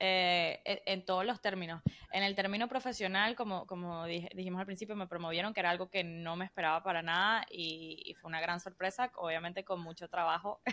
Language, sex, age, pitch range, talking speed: Spanish, female, 10-29, 165-195 Hz, 195 wpm